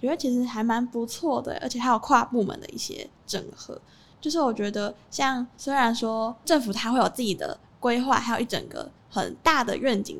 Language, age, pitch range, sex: Chinese, 10-29, 210-250 Hz, female